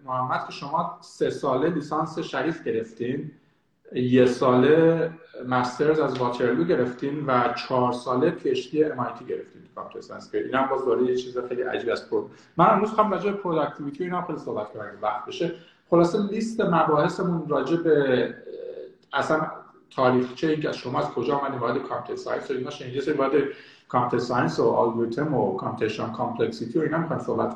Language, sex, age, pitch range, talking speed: Persian, male, 50-69, 125-165 Hz, 135 wpm